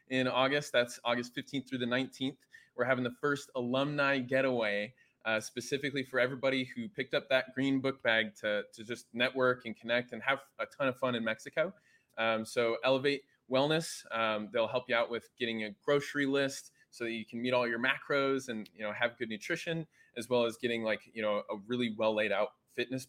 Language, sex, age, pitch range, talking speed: English, male, 20-39, 115-135 Hz, 210 wpm